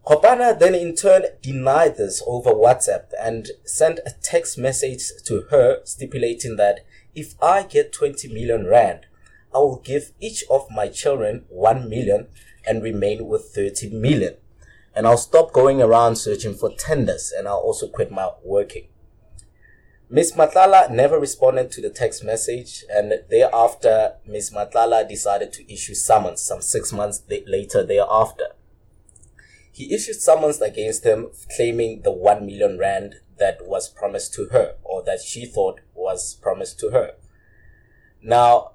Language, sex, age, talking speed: English, male, 20-39, 150 wpm